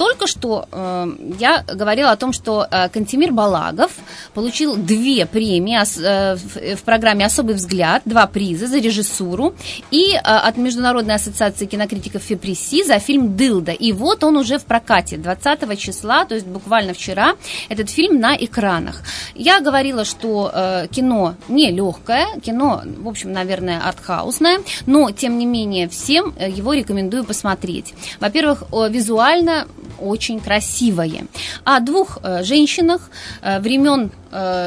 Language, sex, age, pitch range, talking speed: Russian, female, 20-39, 190-265 Hz, 125 wpm